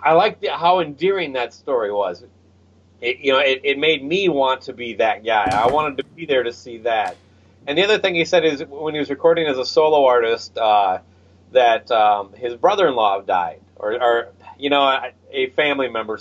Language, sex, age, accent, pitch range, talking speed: English, male, 30-49, American, 100-155 Hz, 205 wpm